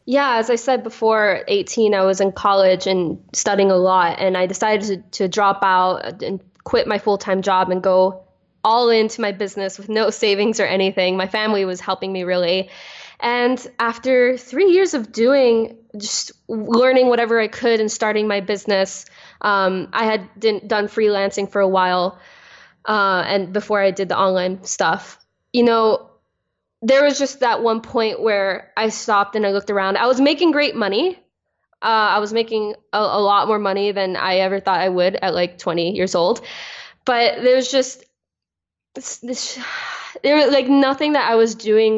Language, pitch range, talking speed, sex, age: English, 195-230 Hz, 185 wpm, female, 10-29